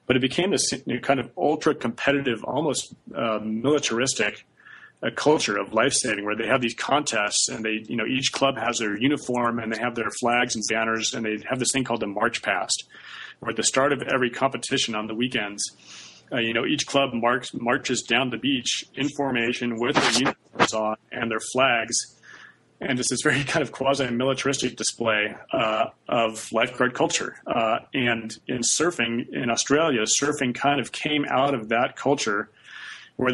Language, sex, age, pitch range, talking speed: English, male, 30-49, 115-135 Hz, 180 wpm